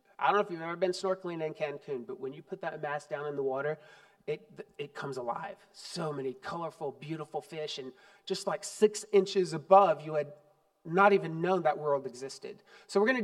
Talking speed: 210 wpm